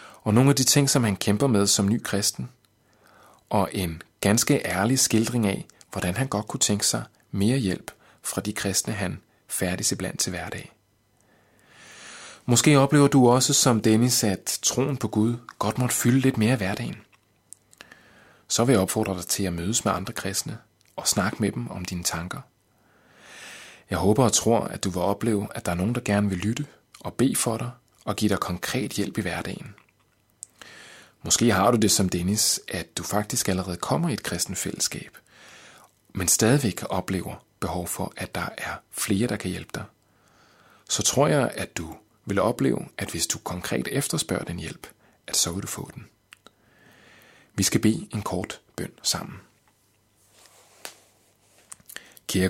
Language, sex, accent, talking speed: Danish, male, native, 175 wpm